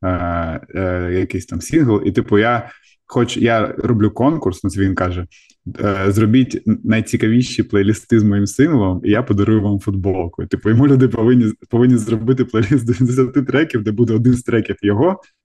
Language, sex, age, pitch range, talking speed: Ukrainian, male, 20-39, 100-120 Hz, 165 wpm